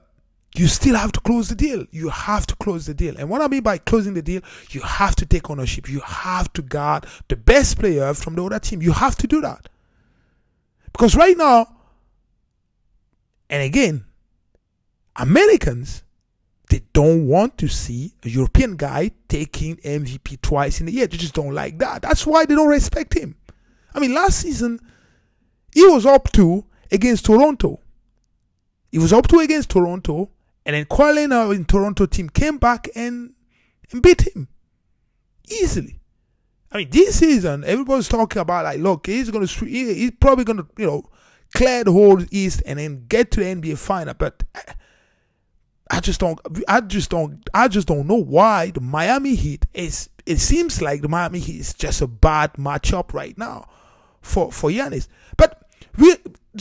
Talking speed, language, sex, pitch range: 175 wpm, English, male, 145-240 Hz